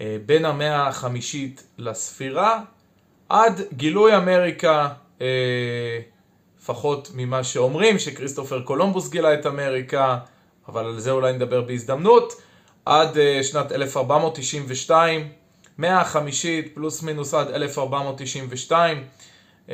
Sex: male